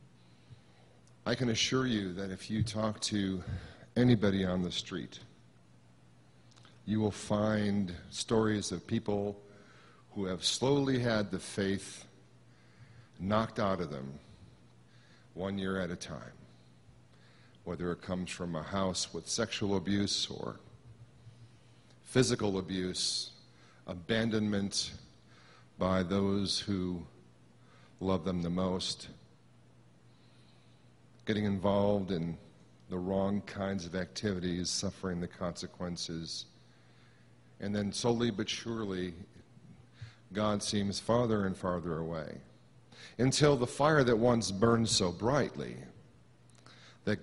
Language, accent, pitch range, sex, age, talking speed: English, American, 80-110 Hz, male, 50-69, 110 wpm